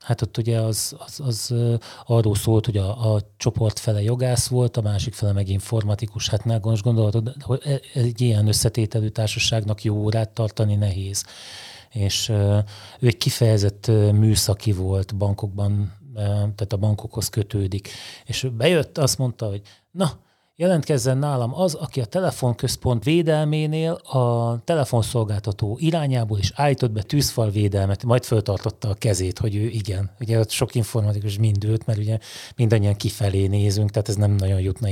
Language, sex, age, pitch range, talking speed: Hungarian, male, 30-49, 105-120 Hz, 145 wpm